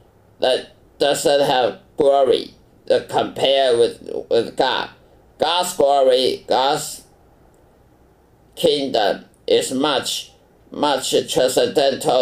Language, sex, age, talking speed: English, male, 50-69, 80 wpm